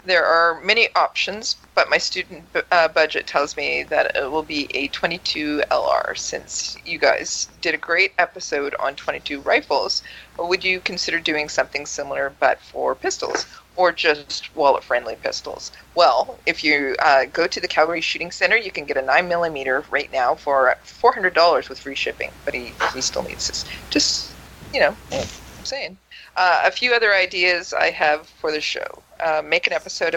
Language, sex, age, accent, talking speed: English, female, 40-59, American, 175 wpm